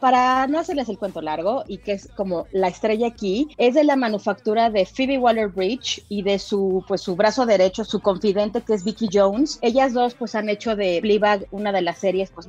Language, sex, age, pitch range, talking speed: Spanish, female, 30-49, 190-240 Hz, 215 wpm